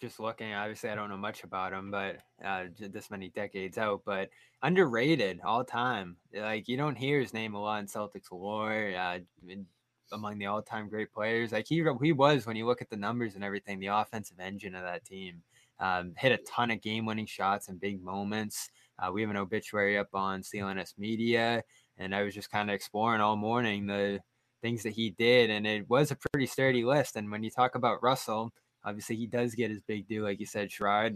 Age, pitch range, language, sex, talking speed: 20-39, 105-125 Hz, English, male, 215 wpm